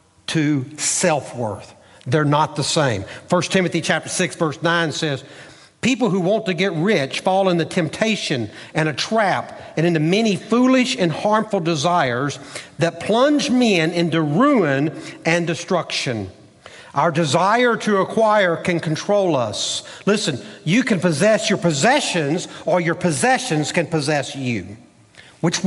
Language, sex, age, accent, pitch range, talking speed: English, male, 60-79, American, 145-200 Hz, 140 wpm